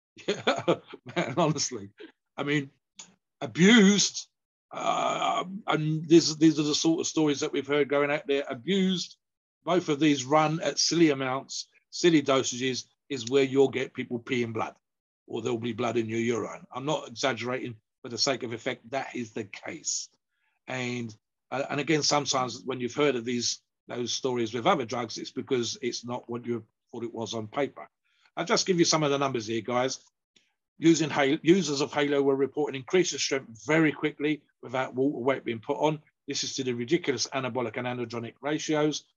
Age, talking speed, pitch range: 50-69, 180 wpm, 120-150 Hz